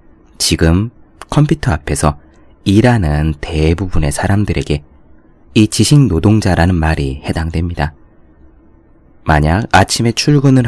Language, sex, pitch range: Korean, male, 75-105 Hz